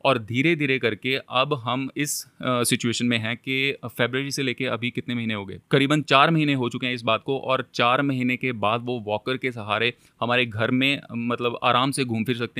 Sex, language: male, Hindi